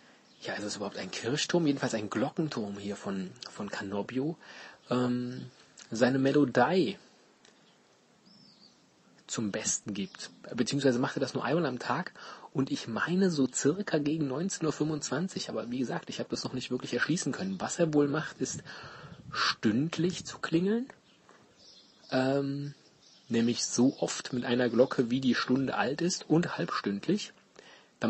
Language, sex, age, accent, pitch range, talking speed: German, male, 30-49, German, 120-155 Hz, 150 wpm